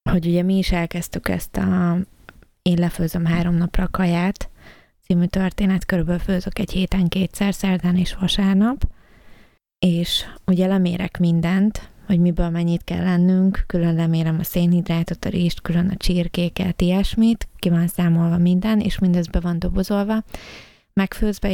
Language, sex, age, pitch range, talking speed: Hungarian, female, 20-39, 170-185 Hz, 140 wpm